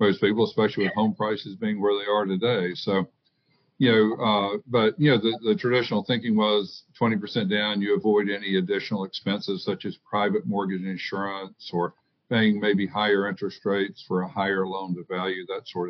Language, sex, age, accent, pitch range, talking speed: English, male, 60-79, American, 95-115 Hz, 185 wpm